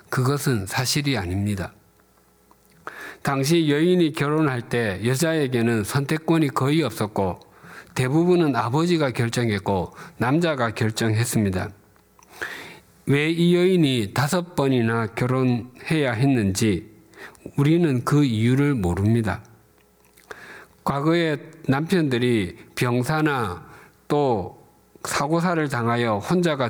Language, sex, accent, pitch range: Korean, male, native, 110-150 Hz